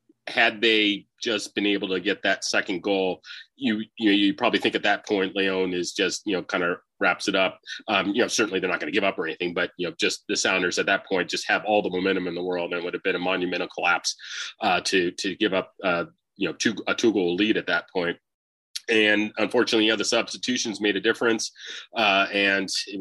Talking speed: 240 wpm